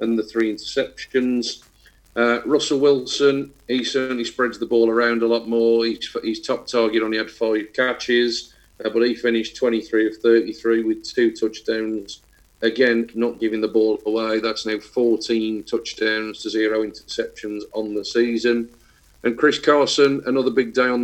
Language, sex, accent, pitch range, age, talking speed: English, male, British, 110-120 Hz, 40-59, 165 wpm